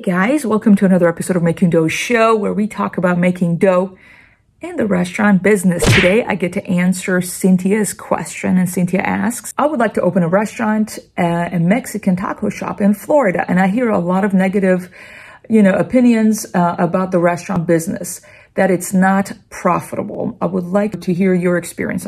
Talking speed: 190 wpm